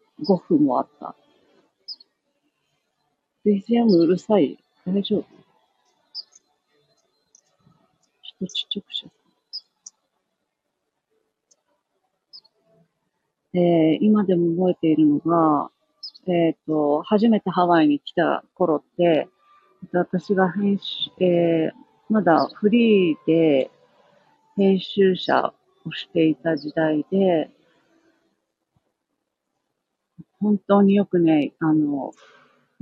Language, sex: Japanese, female